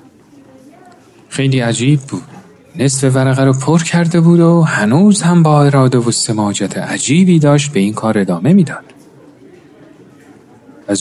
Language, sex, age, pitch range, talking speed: Persian, male, 40-59, 125-175 Hz, 130 wpm